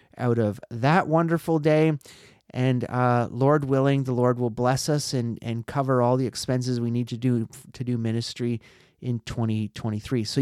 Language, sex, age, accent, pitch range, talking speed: English, male, 30-49, American, 120-145 Hz, 175 wpm